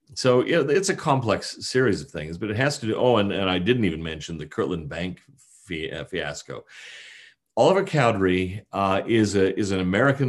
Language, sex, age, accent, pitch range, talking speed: English, male, 40-59, American, 90-110 Hz, 190 wpm